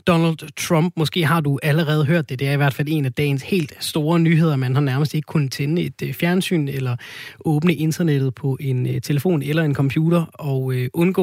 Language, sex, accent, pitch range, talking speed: Danish, male, native, 135-170 Hz, 205 wpm